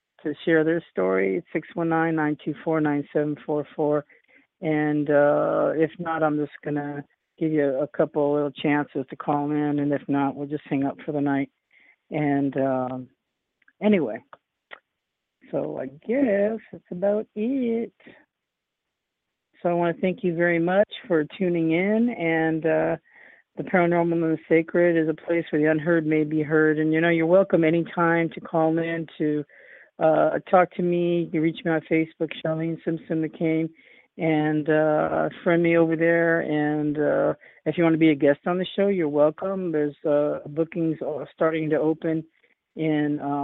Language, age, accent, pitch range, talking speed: English, 50-69, American, 145-165 Hz, 165 wpm